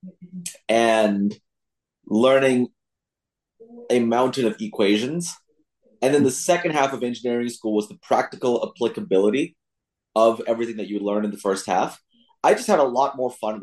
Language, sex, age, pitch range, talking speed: English, male, 30-49, 105-130 Hz, 155 wpm